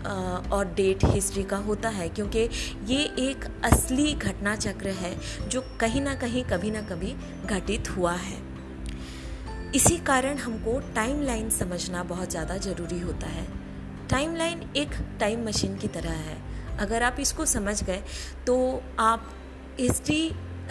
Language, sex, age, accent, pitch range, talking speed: Hindi, female, 20-39, native, 175-250 Hz, 140 wpm